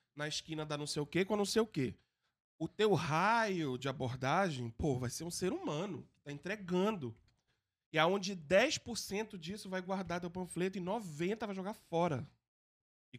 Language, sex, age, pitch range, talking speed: Portuguese, male, 20-39, 160-225 Hz, 190 wpm